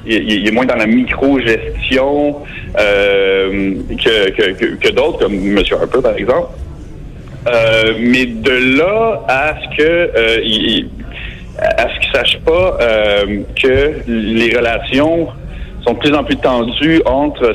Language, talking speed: French, 145 wpm